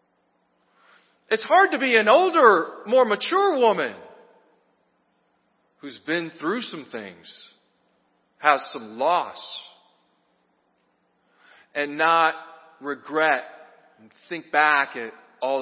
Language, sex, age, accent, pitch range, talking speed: English, male, 40-59, American, 145-240 Hz, 95 wpm